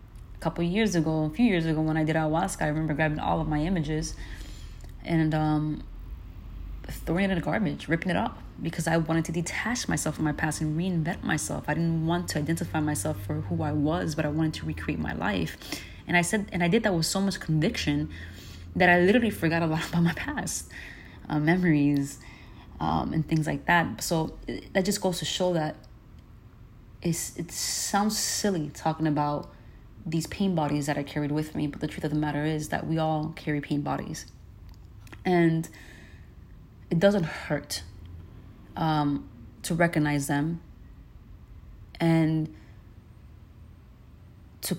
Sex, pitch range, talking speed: female, 130-165 Hz, 175 wpm